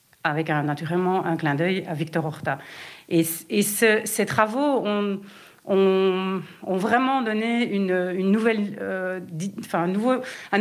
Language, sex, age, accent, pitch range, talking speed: French, female, 40-59, French, 175-230 Hz, 100 wpm